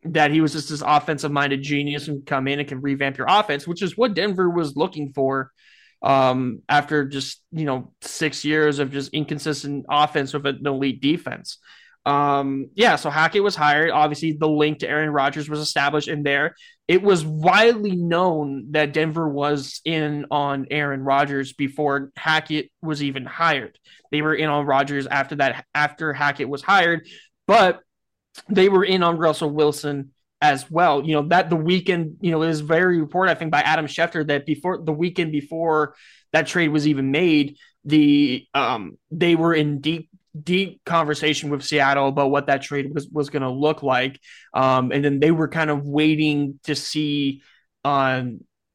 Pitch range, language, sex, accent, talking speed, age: 140-160 Hz, English, male, American, 180 wpm, 20-39